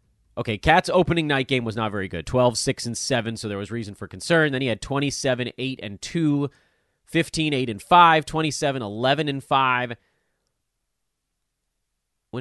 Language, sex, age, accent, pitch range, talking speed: English, male, 30-49, American, 100-155 Hz, 150 wpm